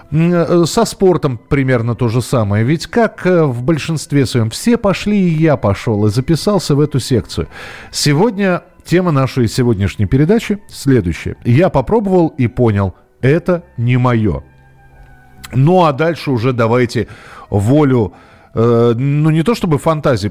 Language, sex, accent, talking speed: Russian, male, native, 135 wpm